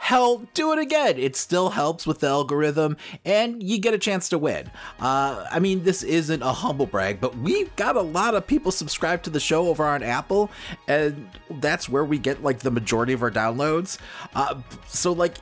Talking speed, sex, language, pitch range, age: 205 wpm, male, English, 120-175 Hz, 30-49